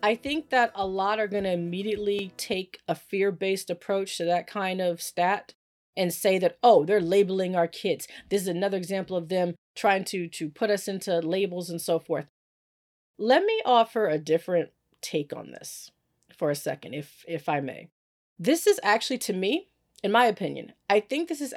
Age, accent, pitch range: 40-59, American, 170-210 Hz